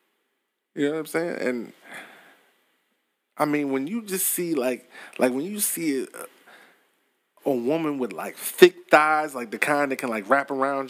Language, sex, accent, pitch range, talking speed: English, male, American, 145-195 Hz, 175 wpm